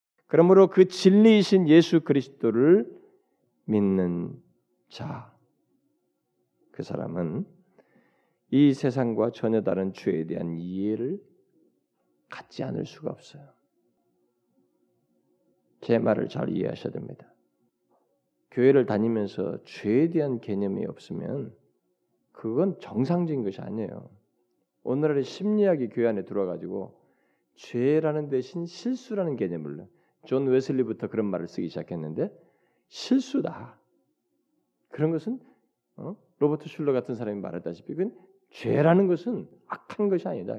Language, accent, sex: Korean, native, male